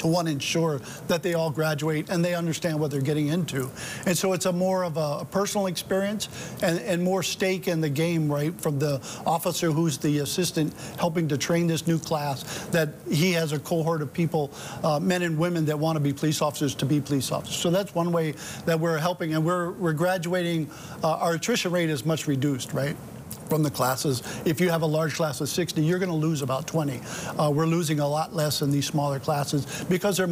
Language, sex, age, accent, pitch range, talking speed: English, male, 50-69, American, 150-175 Hz, 225 wpm